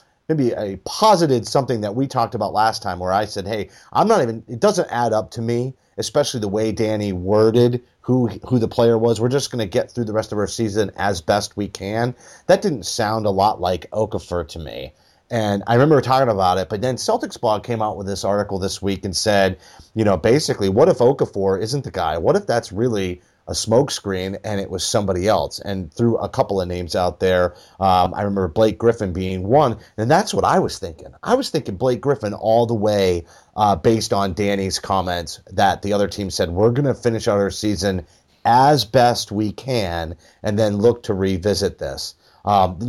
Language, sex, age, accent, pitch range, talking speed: English, male, 30-49, American, 95-120 Hz, 215 wpm